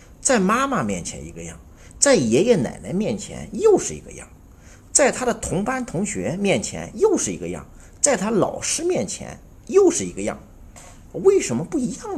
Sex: male